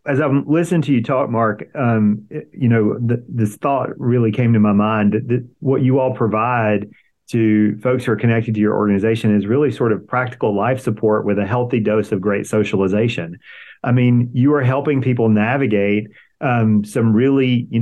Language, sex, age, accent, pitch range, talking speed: English, male, 40-59, American, 110-130 Hz, 190 wpm